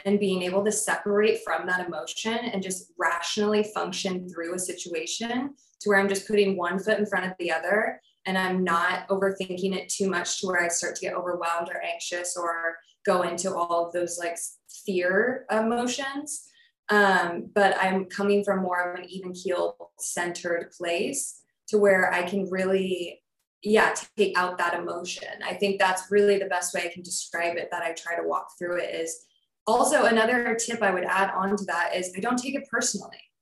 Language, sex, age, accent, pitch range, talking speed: English, female, 20-39, American, 180-225 Hz, 195 wpm